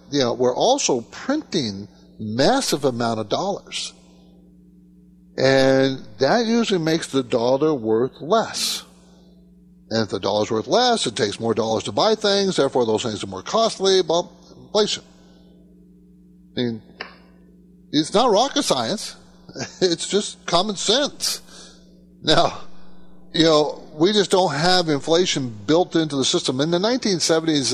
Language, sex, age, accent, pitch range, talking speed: English, male, 60-79, American, 115-180 Hz, 130 wpm